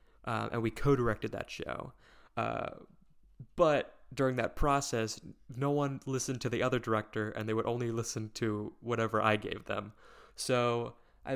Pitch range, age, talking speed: 105-125 Hz, 20-39, 160 wpm